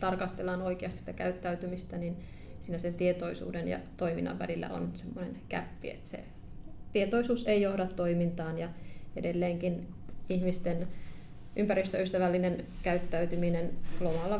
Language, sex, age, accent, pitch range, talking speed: Finnish, female, 30-49, native, 175-195 Hz, 110 wpm